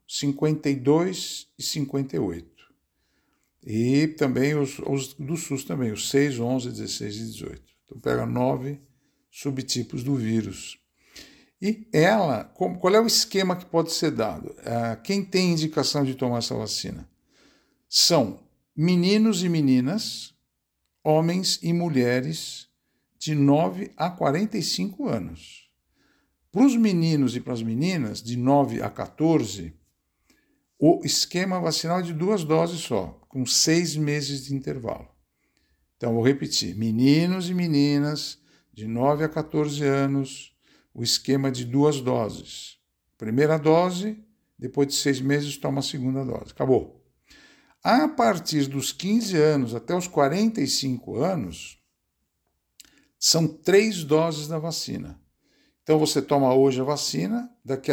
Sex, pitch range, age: male, 125-170 Hz, 60-79